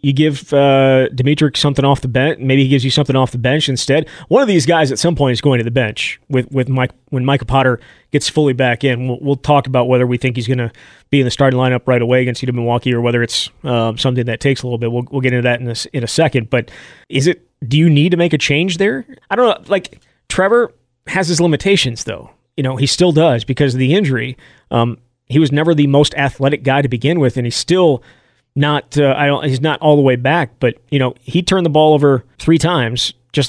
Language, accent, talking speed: English, American, 260 wpm